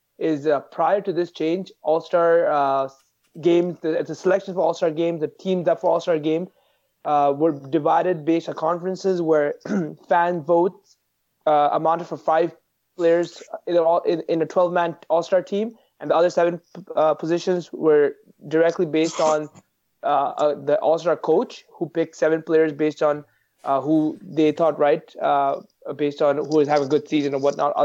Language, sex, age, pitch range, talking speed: English, male, 20-39, 155-190 Hz, 175 wpm